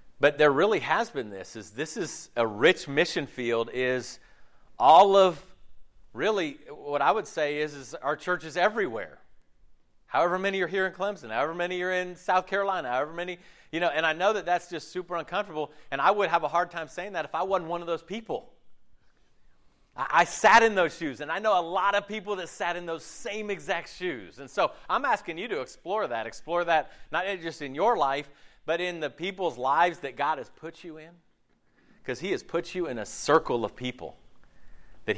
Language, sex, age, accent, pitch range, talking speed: English, male, 40-59, American, 125-180 Hz, 210 wpm